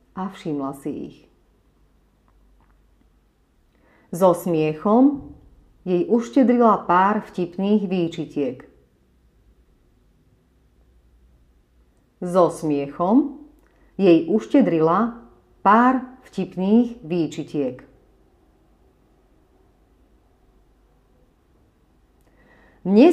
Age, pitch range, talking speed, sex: 30-49, 155-240 Hz, 55 wpm, female